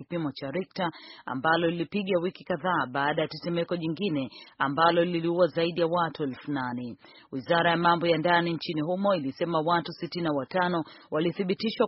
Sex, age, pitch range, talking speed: female, 40-59, 150-185 Hz, 140 wpm